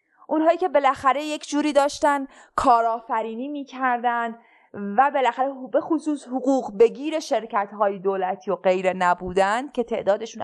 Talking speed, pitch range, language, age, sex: 125 wpm, 195-250 Hz, Persian, 30-49, female